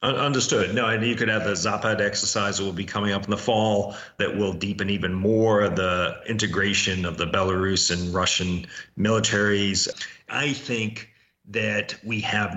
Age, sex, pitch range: 40-59, male, 100-115 Hz